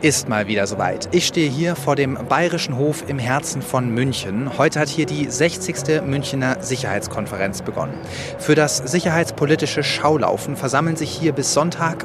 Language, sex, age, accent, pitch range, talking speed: German, male, 30-49, German, 130-155 Hz, 160 wpm